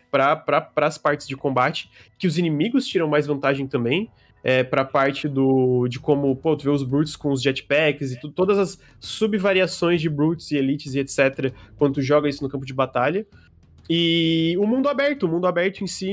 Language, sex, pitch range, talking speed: Portuguese, male, 140-190 Hz, 205 wpm